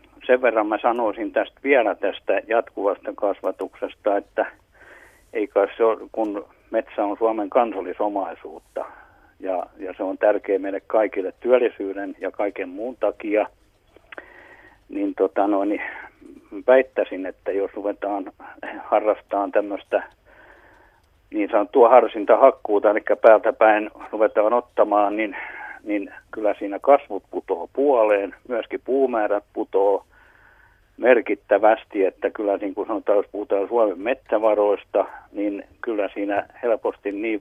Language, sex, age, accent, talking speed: Finnish, male, 50-69, native, 120 wpm